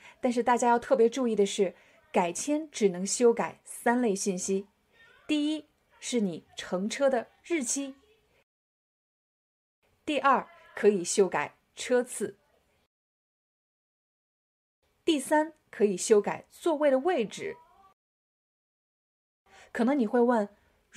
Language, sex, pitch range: Chinese, female, 200-280 Hz